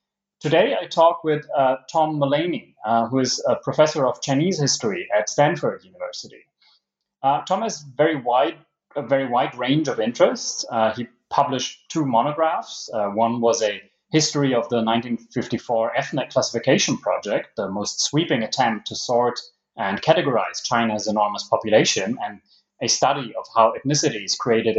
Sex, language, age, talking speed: male, English, 30-49, 150 wpm